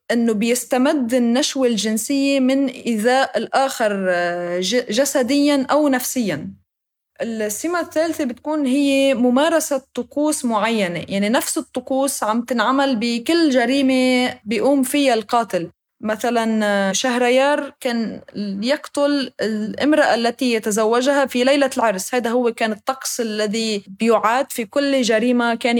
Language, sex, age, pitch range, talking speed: Arabic, female, 20-39, 215-270 Hz, 110 wpm